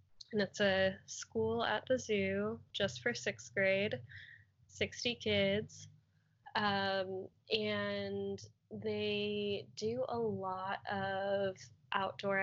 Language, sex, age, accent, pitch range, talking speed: English, female, 10-29, American, 185-210 Hz, 100 wpm